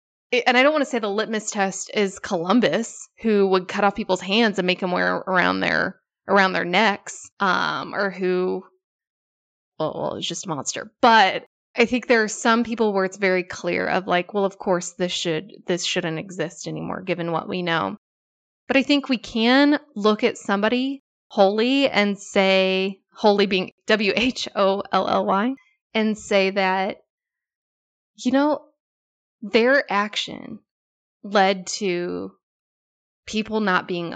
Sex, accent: female, American